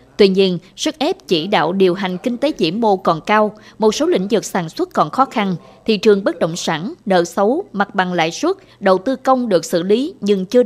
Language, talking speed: Vietnamese, 235 wpm